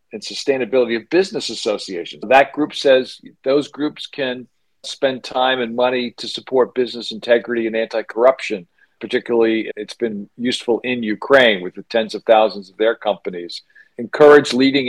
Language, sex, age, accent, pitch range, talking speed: English, male, 50-69, American, 110-130 Hz, 150 wpm